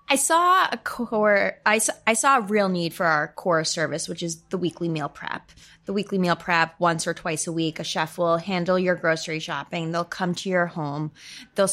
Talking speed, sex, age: 220 wpm, female, 20-39